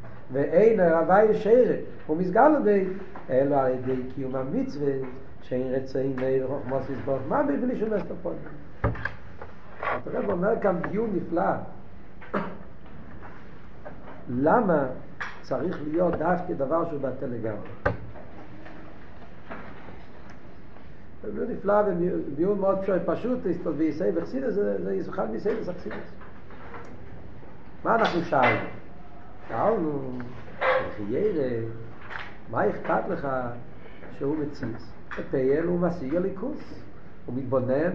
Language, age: Hebrew, 60-79